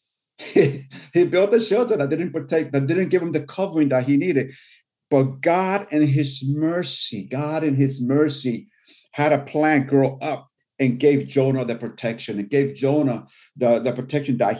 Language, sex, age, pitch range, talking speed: English, male, 50-69, 130-150 Hz, 175 wpm